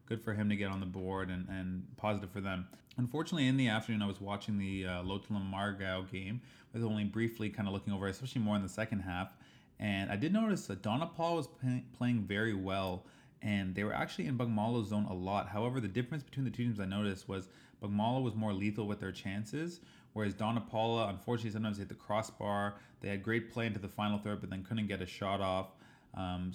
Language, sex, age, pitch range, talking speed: English, male, 20-39, 95-115 Hz, 230 wpm